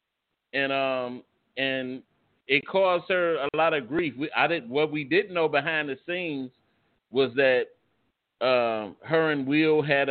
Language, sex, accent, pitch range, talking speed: English, male, American, 135-160 Hz, 160 wpm